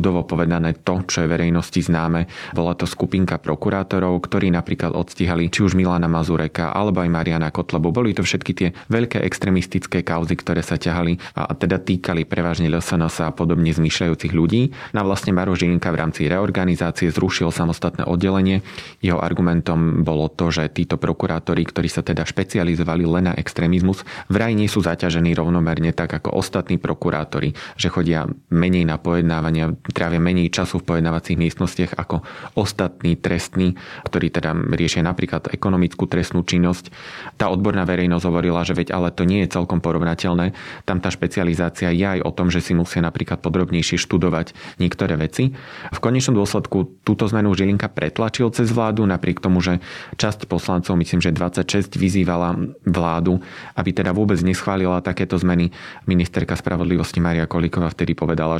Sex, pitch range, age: male, 85-95 Hz, 30-49